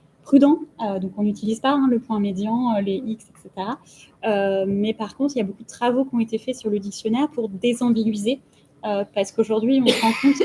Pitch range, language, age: 205-250 Hz, English, 20-39